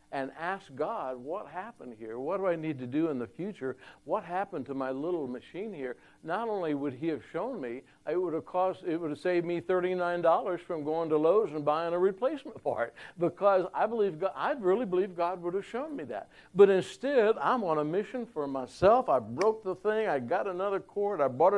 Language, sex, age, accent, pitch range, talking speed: English, male, 60-79, American, 130-180 Hz, 220 wpm